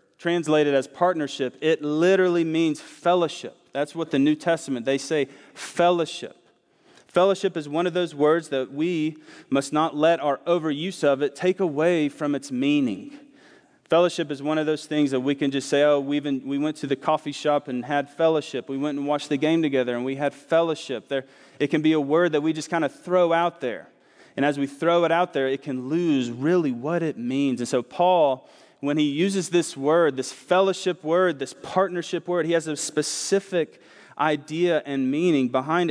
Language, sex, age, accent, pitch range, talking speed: English, male, 30-49, American, 145-175 Hz, 195 wpm